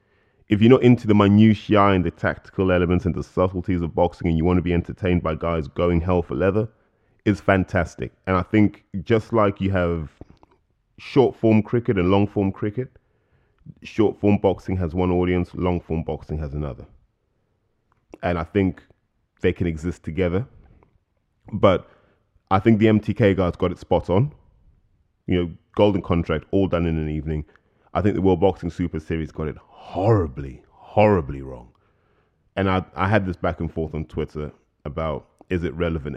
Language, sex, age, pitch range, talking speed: English, male, 20-39, 80-100 Hz, 175 wpm